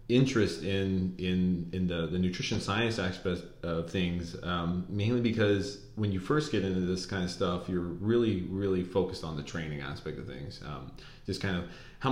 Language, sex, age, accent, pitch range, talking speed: English, male, 30-49, American, 90-110 Hz, 190 wpm